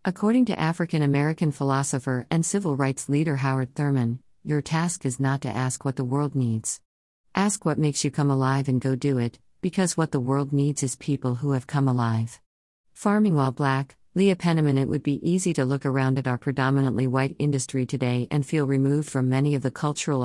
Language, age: English, 50-69